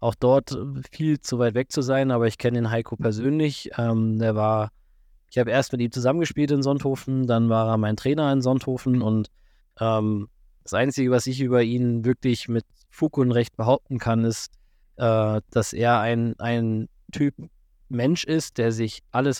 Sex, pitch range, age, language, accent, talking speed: male, 115-135 Hz, 20-39, German, German, 185 wpm